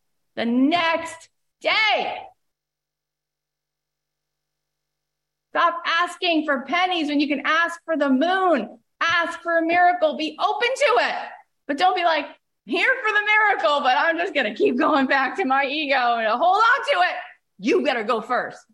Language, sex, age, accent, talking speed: English, female, 40-59, American, 160 wpm